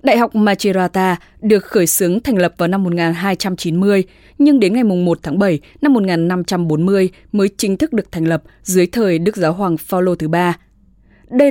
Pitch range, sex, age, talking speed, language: 170-225 Hz, female, 20-39, 170 wpm, English